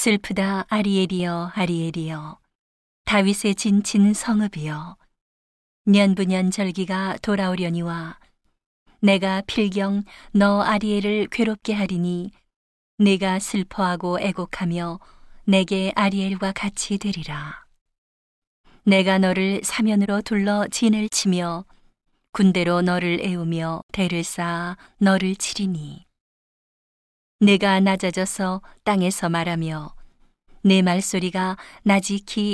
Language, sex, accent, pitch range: Korean, female, native, 180-205 Hz